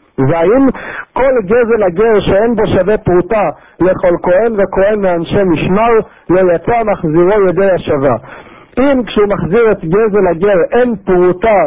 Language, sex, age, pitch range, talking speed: Hebrew, male, 50-69, 170-215 Hz, 130 wpm